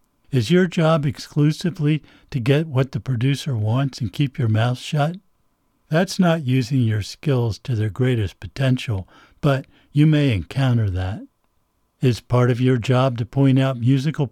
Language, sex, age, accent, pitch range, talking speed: English, male, 60-79, American, 115-145 Hz, 160 wpm